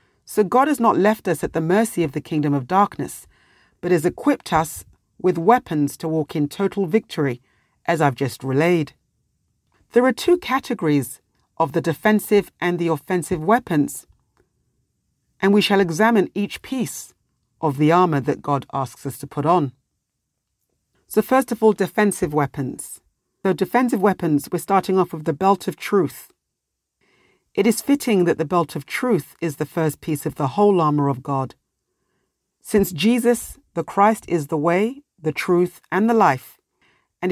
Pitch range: 150-205 Hz